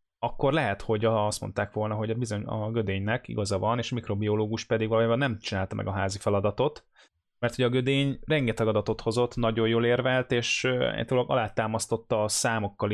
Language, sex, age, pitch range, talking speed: Hungarian, male, 20-39, 105-125 Hz, 180 wpm